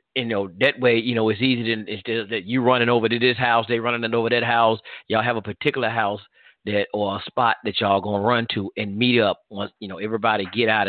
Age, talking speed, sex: 40-59, 250 wpm, male